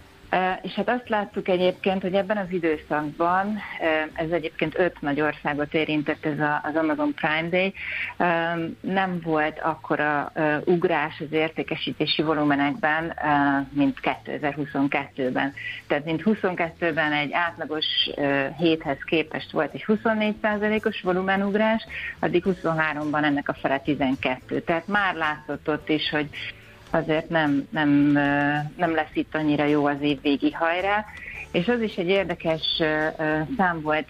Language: Hungarian